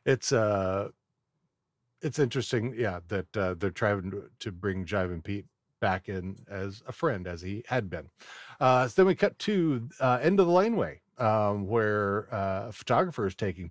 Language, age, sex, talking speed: English, 50-69, male, 180 wpm